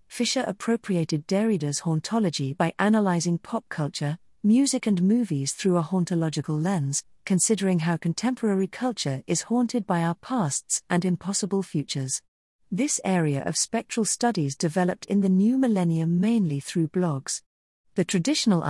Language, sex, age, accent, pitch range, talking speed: English, female, 40-59, British, 160-215 Hz, 135 wpm